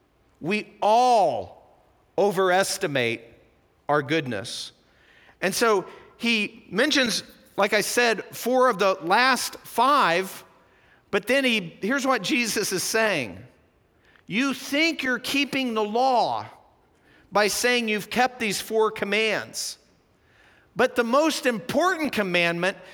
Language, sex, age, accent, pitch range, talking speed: English, male, 50-69, American, 185-250 Hz, 110 wpm